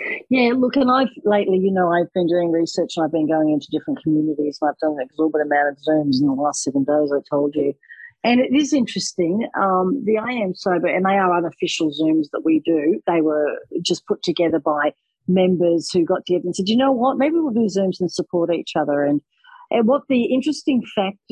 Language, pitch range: English, 175-240 Hz